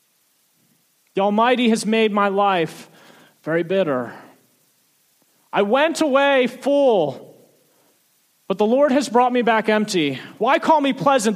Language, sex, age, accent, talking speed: English, male, 30-49, American, 125 wpm